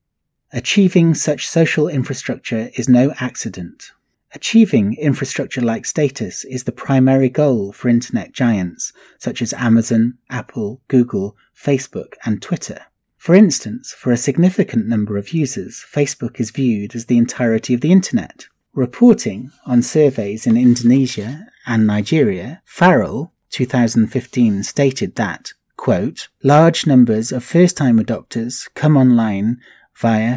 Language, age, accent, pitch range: English, 30-49, British, 115-145 Hz